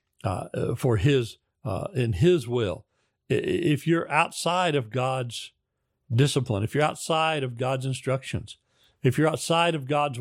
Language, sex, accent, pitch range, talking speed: English, male, American, 125-160 Hz, 140 wpm